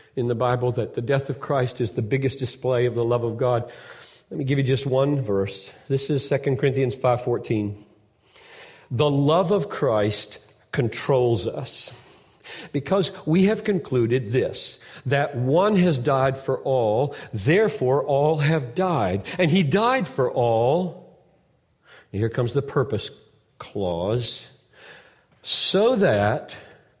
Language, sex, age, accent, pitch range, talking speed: English, male, 50-69, American, 110-145 Hz, 140 wpm